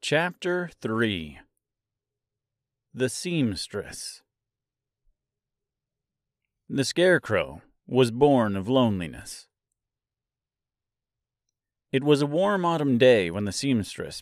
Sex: male